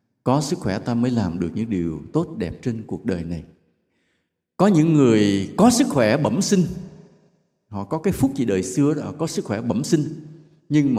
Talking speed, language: 215 wpm, English